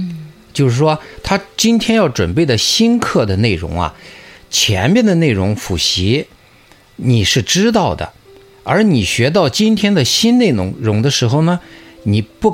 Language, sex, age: Chinese, male, 50-69